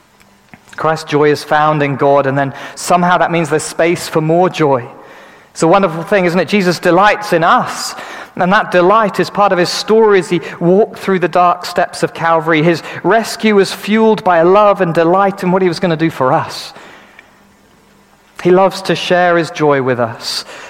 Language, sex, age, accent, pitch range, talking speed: English, male, 40-59, British, 140-190 Hz, 195 wpm